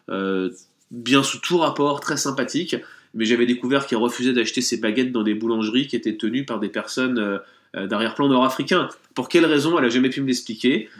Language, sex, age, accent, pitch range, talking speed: French, male, 20-39, French, 105-140 Hz, 195 wpm